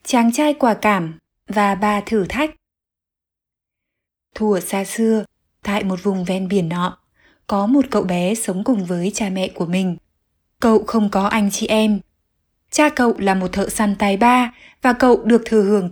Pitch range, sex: 190-245 Hz, female